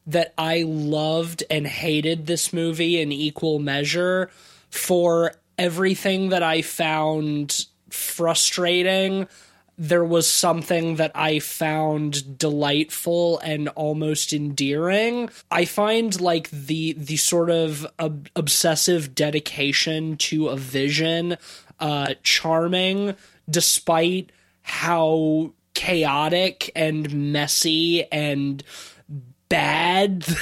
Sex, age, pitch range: male, 20-39, 150-185 Hz